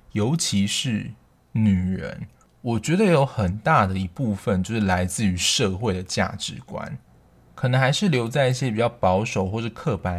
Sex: male